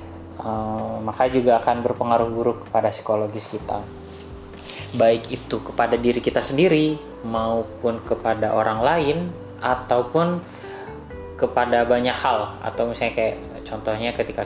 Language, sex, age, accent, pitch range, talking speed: Indonesian, male, 20-39, native, 105-125 Hz, 115 wpm